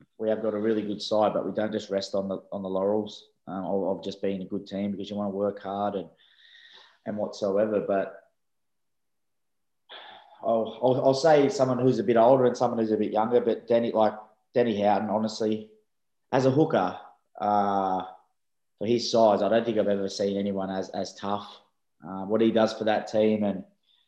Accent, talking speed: Australian, 200 wpm